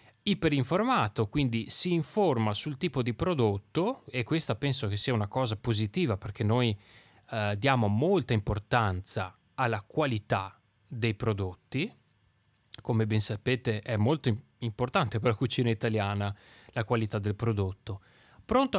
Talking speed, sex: 130 wpm, male